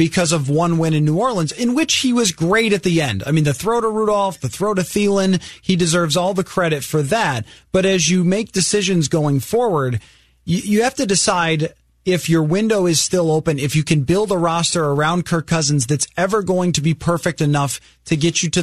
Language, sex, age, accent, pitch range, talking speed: English, male, 30-49, American, 150-195 Hz, 220 wpm